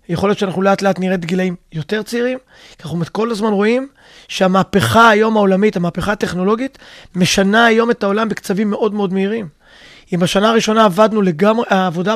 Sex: male